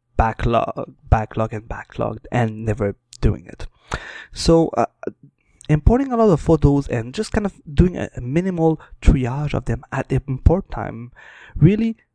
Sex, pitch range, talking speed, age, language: male, 115-155 Hz, 155 wpm, 20-39, English